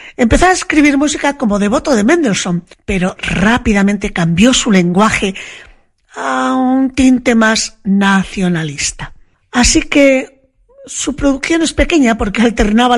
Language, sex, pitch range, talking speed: Spanish, female, 195-250 Hz, 120 wpm